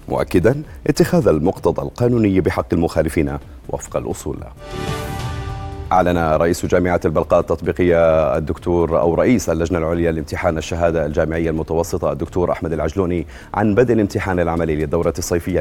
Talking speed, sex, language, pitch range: 120 wpm, male, Arabic, 80-95 Hz